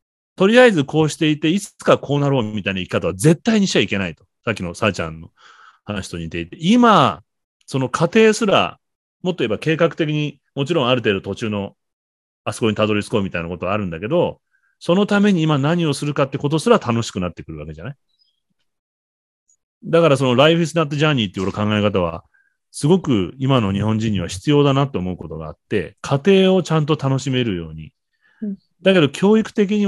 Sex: male